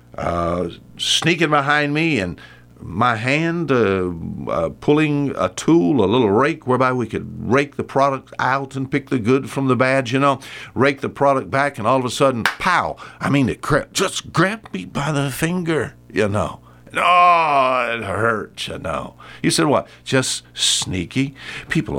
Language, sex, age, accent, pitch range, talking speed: English, male, 60-79, American, 90-140 Hz, 170 wpm